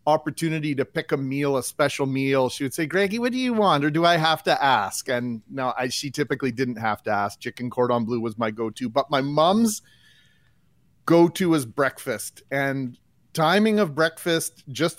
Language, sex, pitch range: English, male, 125-165 Hz